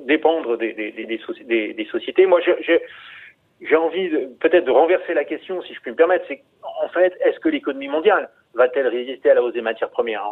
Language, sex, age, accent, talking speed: French, male, 40-59, French, 210 wpm